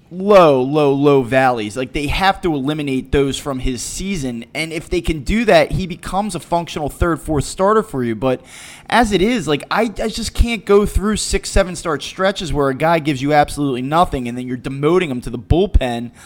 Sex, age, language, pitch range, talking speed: male, 20-39, English, 130-170 Hz, 210 wpm